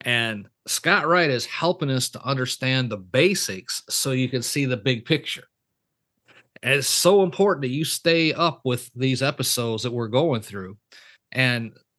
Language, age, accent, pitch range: English, 40-59, American, 125-160 Hz